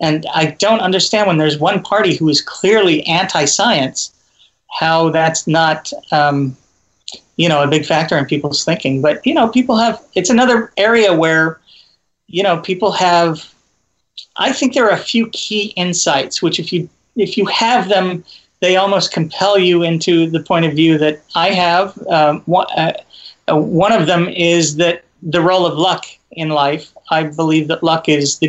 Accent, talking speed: American, 175 wpm